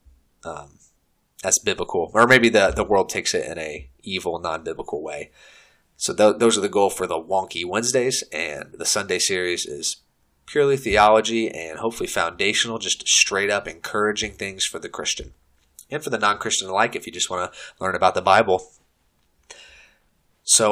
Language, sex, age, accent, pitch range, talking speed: English, male, 30-49, American, 80-115 Hz, 165 wpm